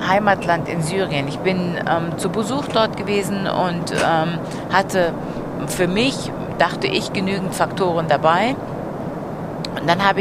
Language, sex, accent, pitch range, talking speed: German, female, German, 165-195 Hz, 135 wpm